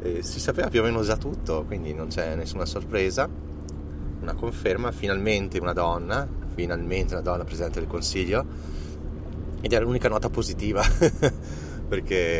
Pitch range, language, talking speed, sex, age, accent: 80-95 Hz, Italian, 145 wpm, male, 30-49, native